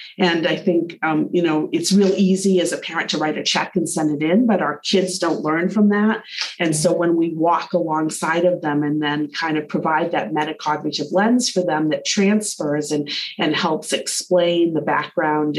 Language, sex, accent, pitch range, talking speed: English, female, American, 160-195 Hz, 205 wpm